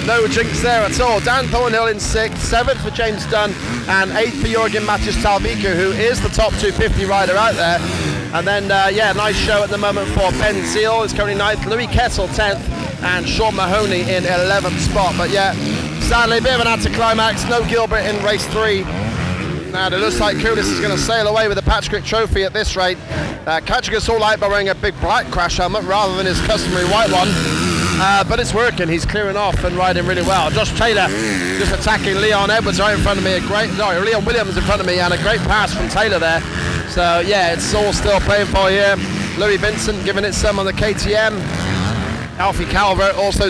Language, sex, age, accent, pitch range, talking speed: English, male, 20-39, British, 180-215 Hz, 215 wpm